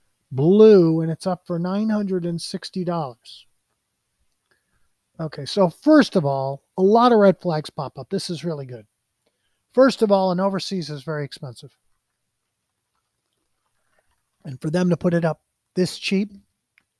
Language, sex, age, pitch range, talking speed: English, male, 40-59, 140-185 Hz, 150 wpm